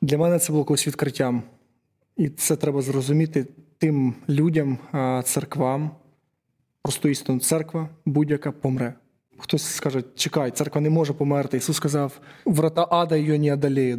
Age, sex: 20-39, male